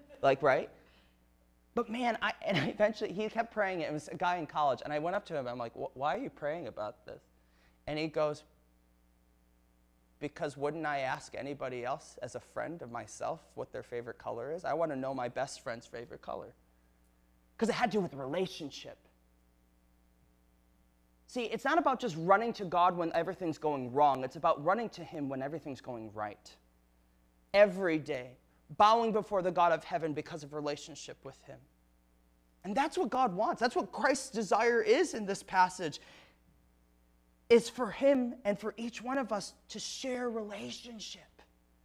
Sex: male